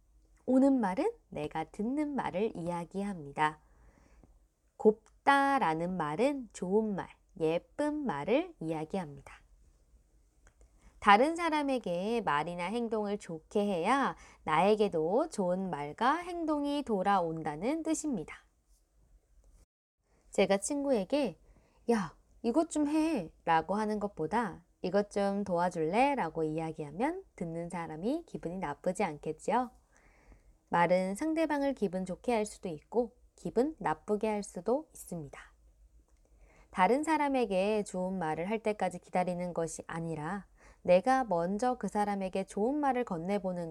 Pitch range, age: 160-240 Hz, 20-39